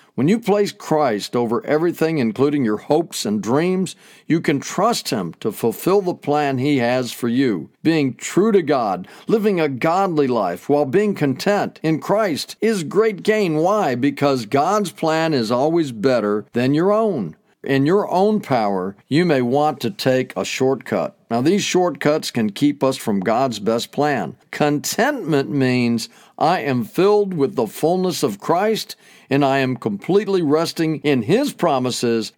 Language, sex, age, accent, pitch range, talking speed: English, male, 50-69, American, 130-190 Hz, 165 wpm